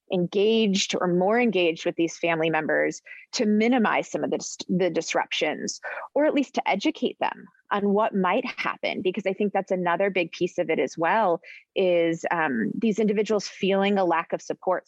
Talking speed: 180 wpm